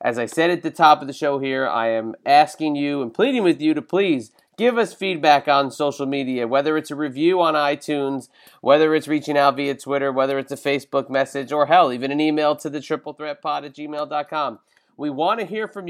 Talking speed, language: 215 wpm, English